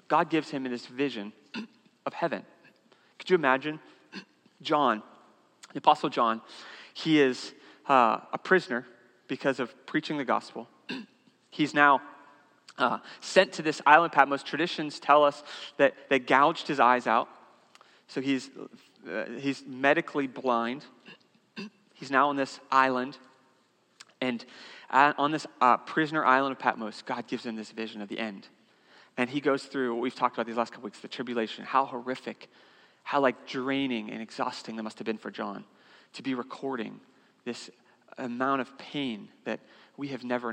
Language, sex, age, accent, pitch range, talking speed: English, male, 30-49, American, 120-145 Hz, 155 wpm